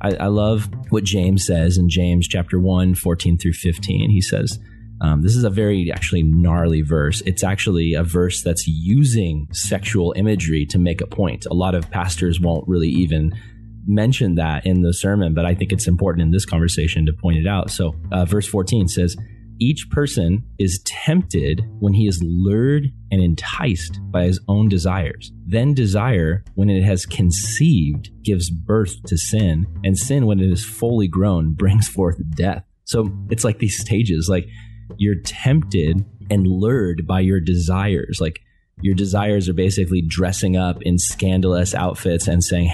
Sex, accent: male, American